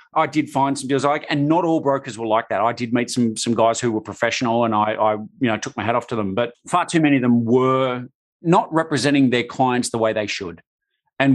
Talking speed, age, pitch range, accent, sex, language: 260 wpm, 40-59, 115-145 Hz, Australian, male, English